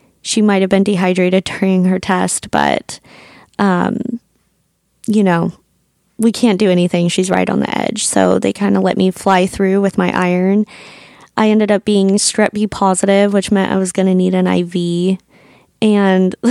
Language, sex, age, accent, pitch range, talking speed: English, female, 20-39, American, 175-200 Hz, 180 wpm